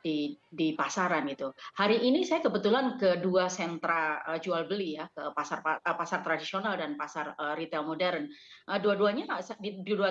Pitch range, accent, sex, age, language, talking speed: 160-205 Hz, native, female, 30-49, Indonesian, 180 wpm